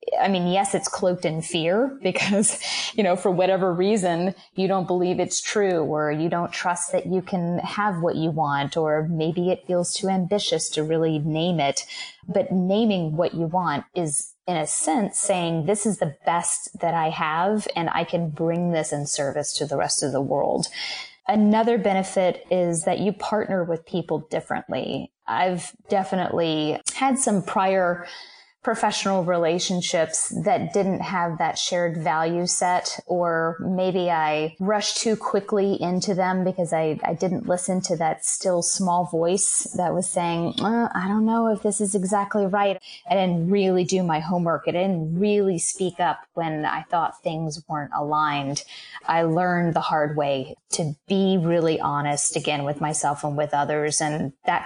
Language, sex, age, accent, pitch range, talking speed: English, female, 20-39, American, 165-195 Hz, 170 wpm